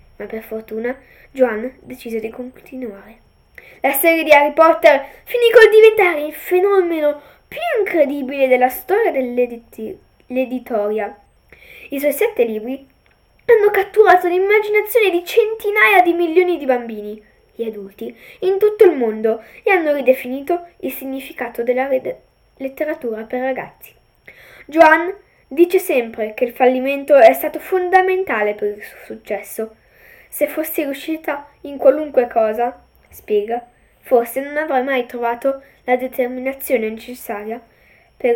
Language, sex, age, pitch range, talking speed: Italian, female, 10-29, 235-330 Hz, 125 wpm